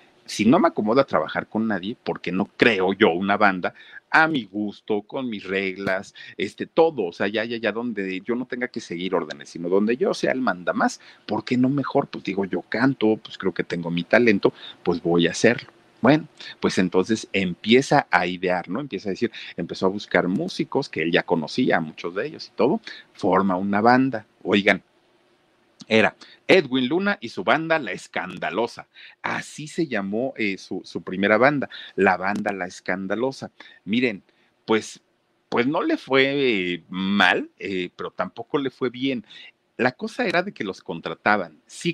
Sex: male